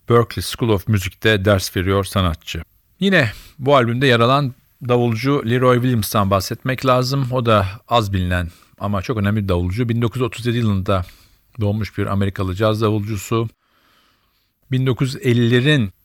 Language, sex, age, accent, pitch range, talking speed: Turkish, male, 50-69, native, 100-115 Hz, 125 wpm